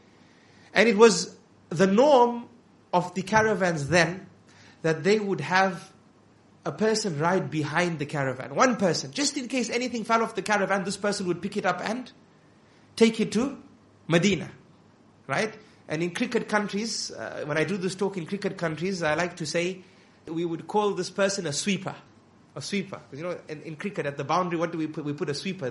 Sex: male